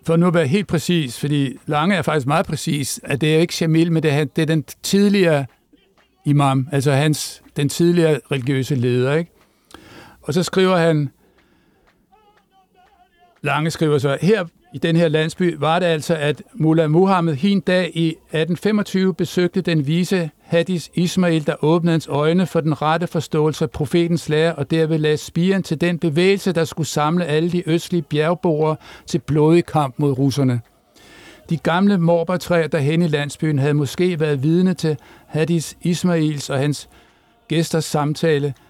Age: 60-79